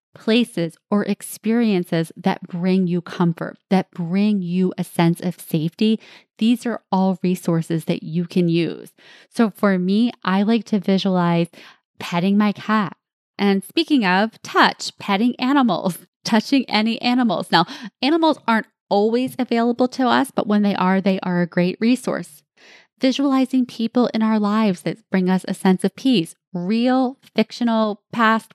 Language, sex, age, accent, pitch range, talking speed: English, female, 20-39, American, 180-230 Hz, 150 wpm